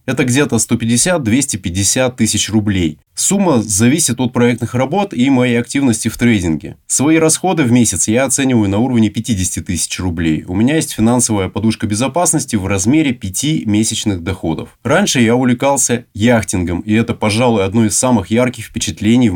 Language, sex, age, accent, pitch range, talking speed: Russian, male, 20-39, native, 105-130 Hz, 155 wpm